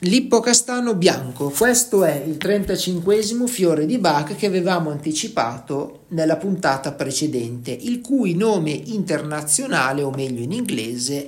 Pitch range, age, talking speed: 140-190 Hz, 40-59, 120 wpm